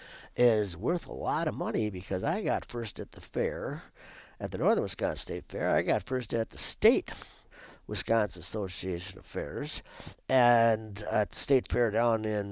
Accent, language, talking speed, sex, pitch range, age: American, English, 175 wpm, male, 105-160 Hz, 60-79